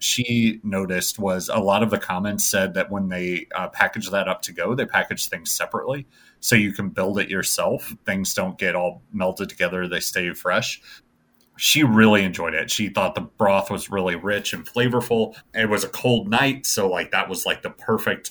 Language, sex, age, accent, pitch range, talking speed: English, male, 30-49, American, 95-115 Hz, 205 wpm